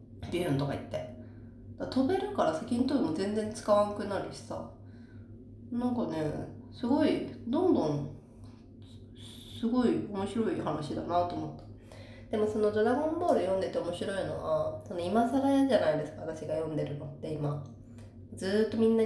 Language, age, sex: Japanese, 30-49, female